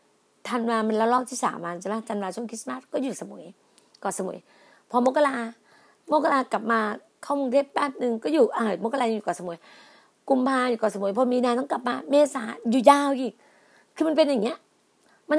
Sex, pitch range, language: female, 225-270 Hz, Thai